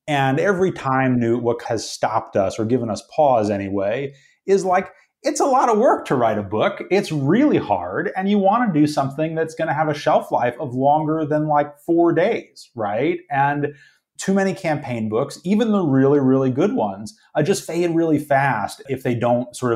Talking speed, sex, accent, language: 200 wpm, male, American, English